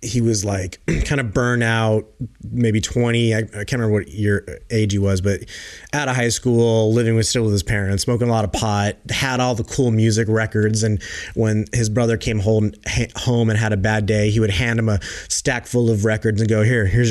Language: English